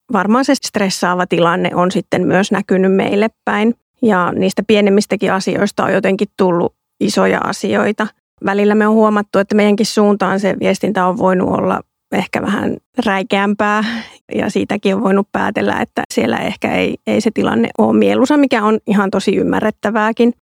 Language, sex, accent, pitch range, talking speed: Finnish, female, native, 190-220 Hz, 155 wpm